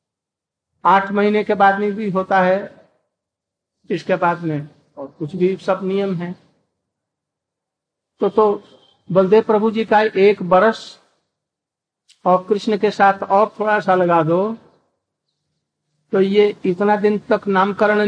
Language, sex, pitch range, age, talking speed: Hindi, male, 185-210 Hz, 60-79, 135 wpm